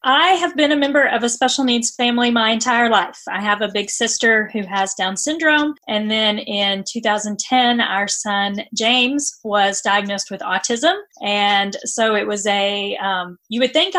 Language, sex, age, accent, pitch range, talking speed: English, female, 30-49, American, 210-265 Hz, 180 wpm